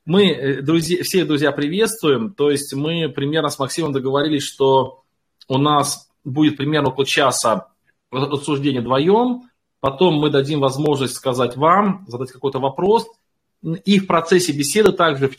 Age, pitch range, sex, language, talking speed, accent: 20-39, 130-170 Hz, male, Russian, 135 wpm, native